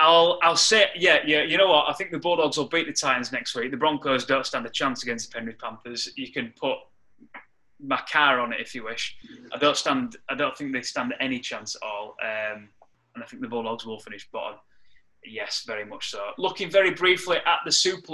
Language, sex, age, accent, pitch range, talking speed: English, male, 20-39, British, 130-160 Hz, 230 wpm